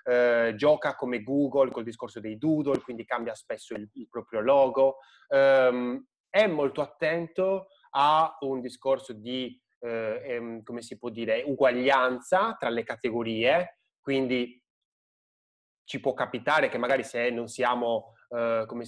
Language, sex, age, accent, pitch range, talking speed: Italian, male, 20-39, native, 115-135 Hz, 140 wpm